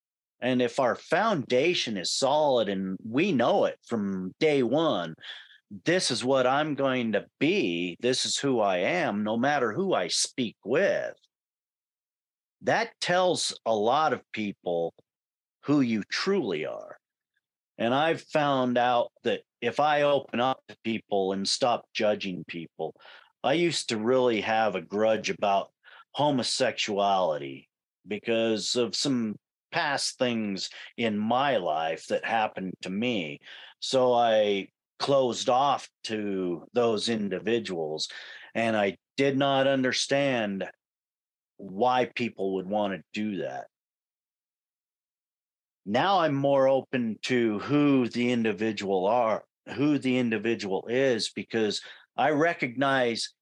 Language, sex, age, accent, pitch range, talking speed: English, male, 40-59, American, 100-135 Hz, 125 wpm